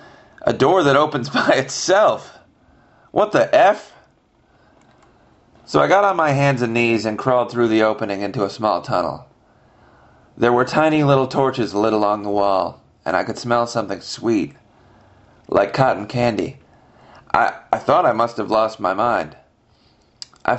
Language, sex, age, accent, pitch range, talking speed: English, male, 30-49, American, 105-130 Hz, 155 wpm